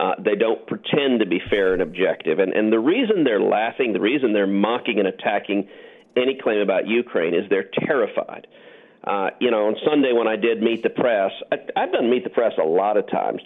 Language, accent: English, American